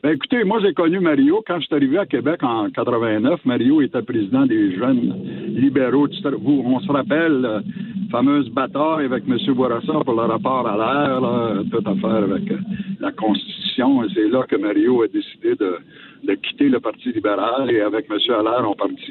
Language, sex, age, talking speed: French, male, 60-79, 190 wpm